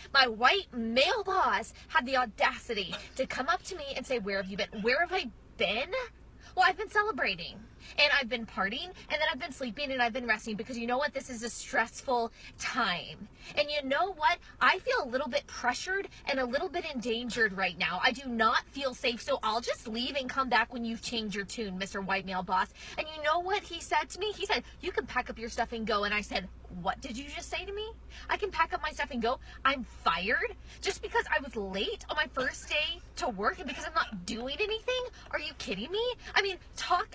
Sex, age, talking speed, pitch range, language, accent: female, 20-39, 240 wpm, 235-345 Hz, English, American